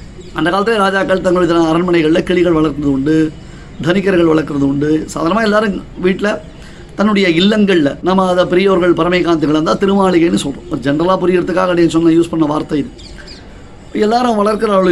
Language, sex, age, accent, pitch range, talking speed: Tamil, male, 30-49, native, 165-195 Hz, 130 wpm